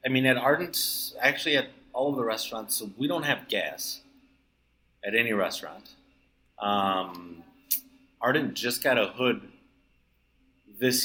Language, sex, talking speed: English, male, 135 wpm